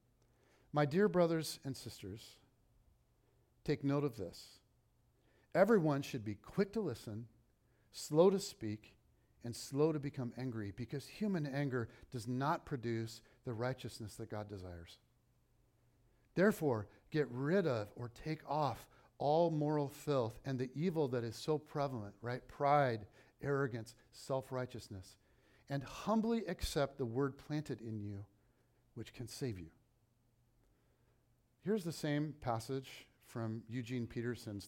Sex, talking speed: male, 130 wpm